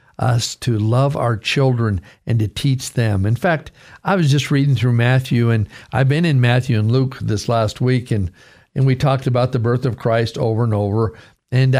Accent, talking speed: American, 205 wpm